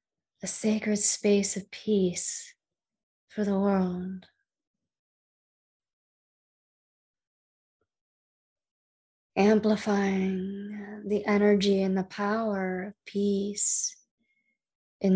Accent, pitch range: American, 185-215 Hz